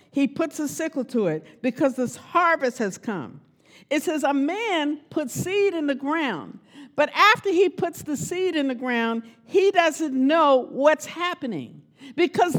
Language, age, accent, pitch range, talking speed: English, 50-69, American, 255-350 Hz, 165 wpm